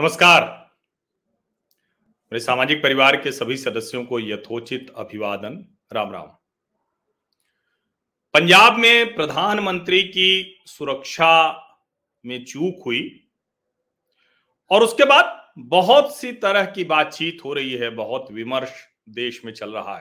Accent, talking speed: native, 110 wpm